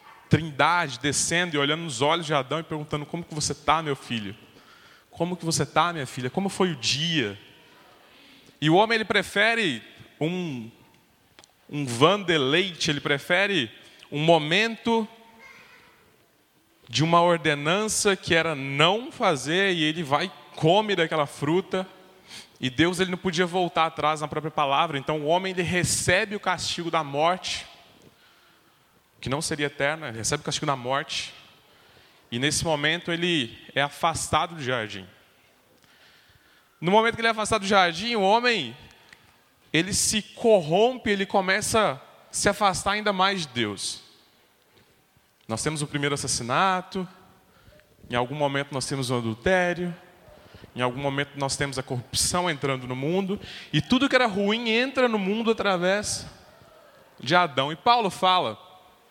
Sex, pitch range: male, 140-190 Hz